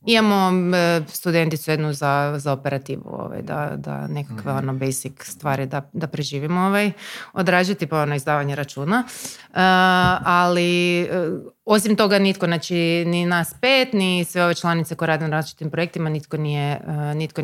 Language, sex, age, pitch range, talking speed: Croatian, female, 30-49, 150-195 Hz, 155 wpm